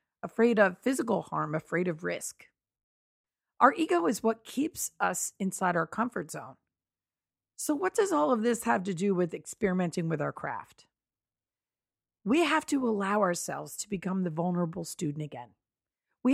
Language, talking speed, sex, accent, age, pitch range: English, 160 wpm, female, American, 40-59, 180-245 Hz